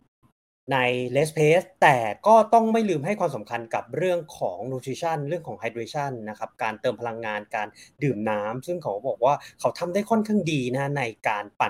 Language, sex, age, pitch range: Thai, male, 20-39, 125-180 Hz